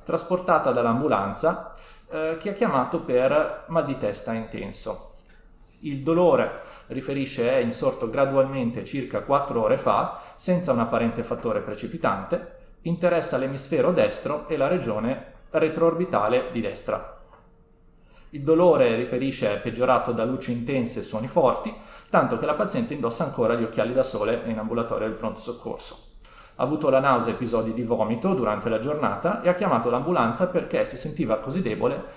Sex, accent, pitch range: male, native, 115-155 Hz